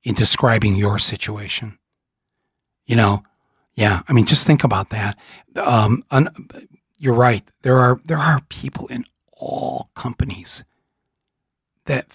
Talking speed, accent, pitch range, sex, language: 125 wpm, American, 110-135 Hz, male, English